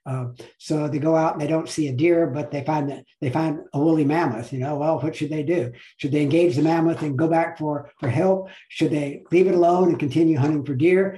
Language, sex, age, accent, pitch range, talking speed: English, male, 60-79, American, 140-170 Hz, 260 wpm